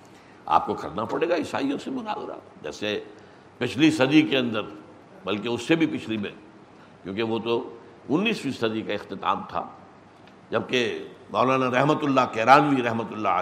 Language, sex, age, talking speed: Urdu, male, 60-79, 155 wpm